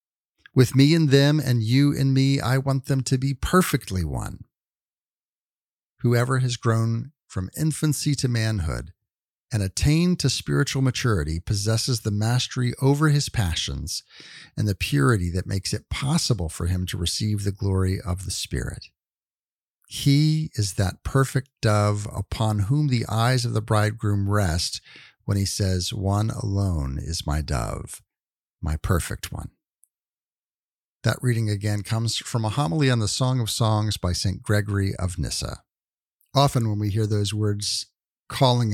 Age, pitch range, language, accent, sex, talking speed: 50-69, 100-130 Hz, English, American, male, 150 wpm